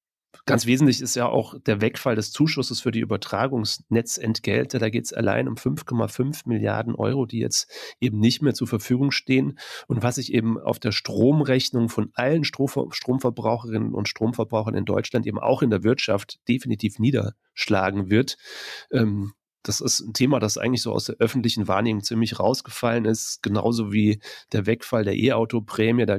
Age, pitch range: 30-49, 105-125 Hz